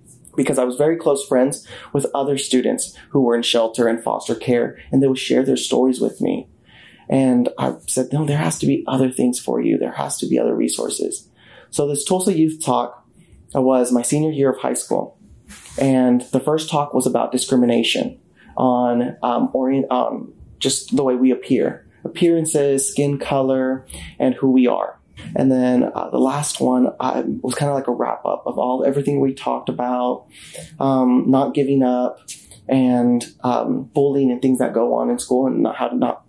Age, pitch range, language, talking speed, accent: 30-49, 125-140 Hz, English, 185 wpm, American